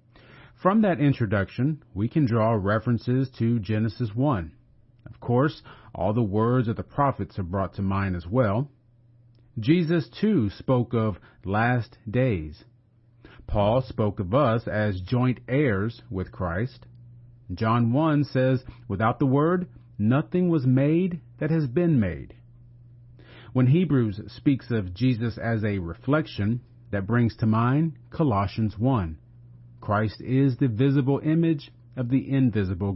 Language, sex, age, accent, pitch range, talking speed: English, male, 40-59, American, 110-130 Hz, 135 wpm